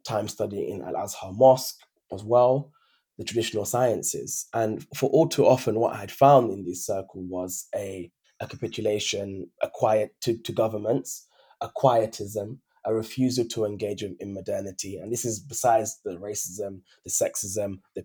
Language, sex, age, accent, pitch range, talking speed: English, male, 20-39, British, 105-130 Hz, 155 wpm